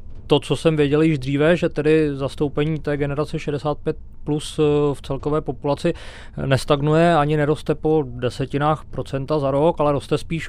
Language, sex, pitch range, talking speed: Czech, male, 135-150 Hz, 155 wpm